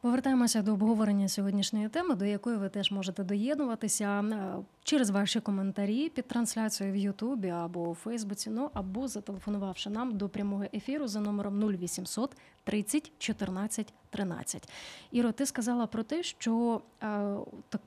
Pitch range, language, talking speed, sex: 200-245 Hz, Ukrainian, 140 wpm, female